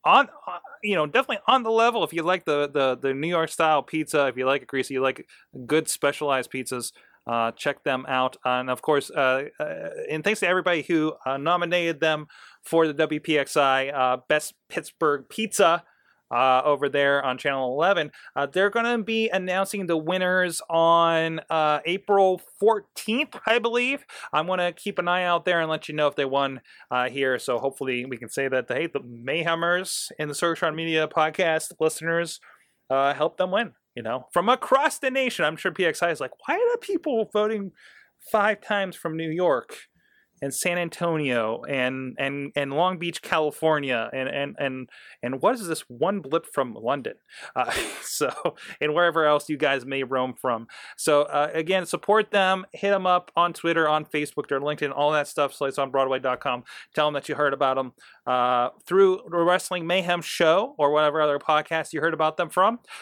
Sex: male